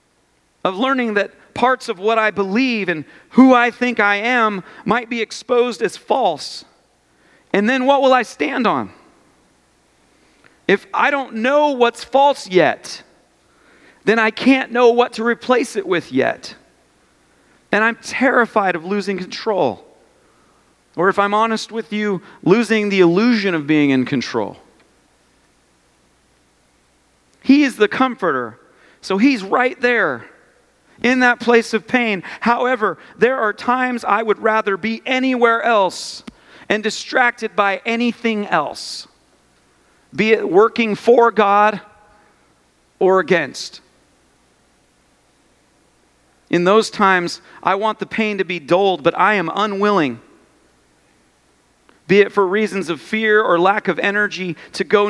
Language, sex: English, male